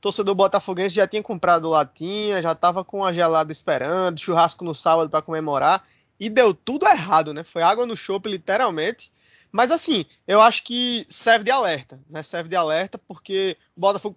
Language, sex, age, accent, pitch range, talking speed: Portuguese, male, 20-39, Brazilian, 170-210 Hz, 180 wpm